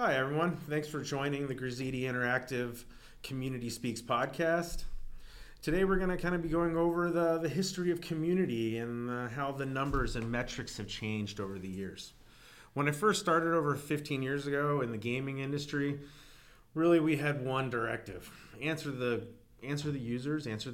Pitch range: 110-150 Hz